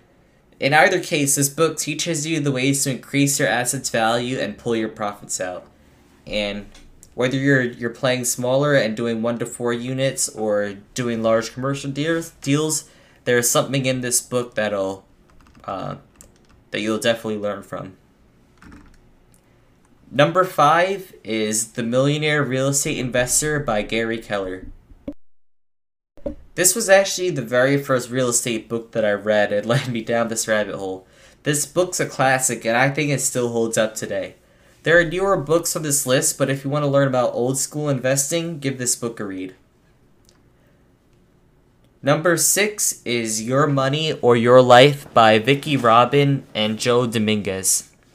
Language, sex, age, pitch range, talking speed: English, male, 20-39, 115-145 Hz, 160 wpm